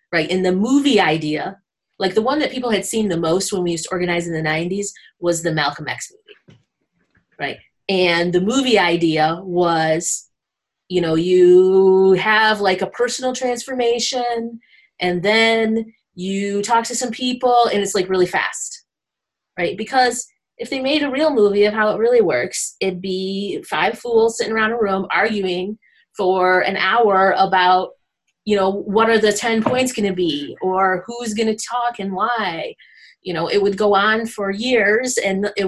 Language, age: English, 30-49